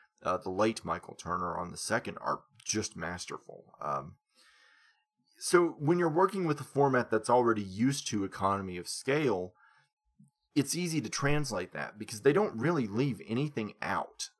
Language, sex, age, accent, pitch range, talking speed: English, male, 30-49, American, 95-125 Hz, 160 wpm